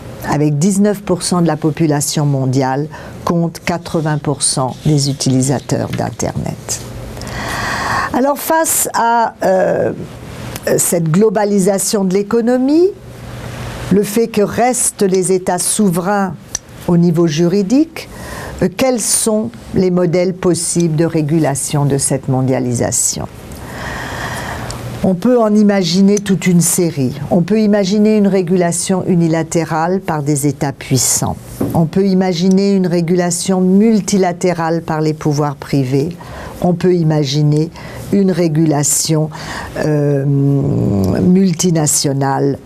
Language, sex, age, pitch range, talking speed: English, female, 50-69, 150-195 Hz, 105 wpm